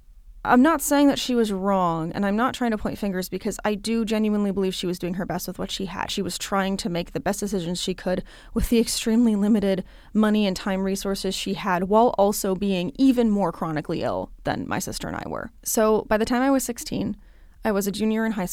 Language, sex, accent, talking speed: English, female, American, 240 wpm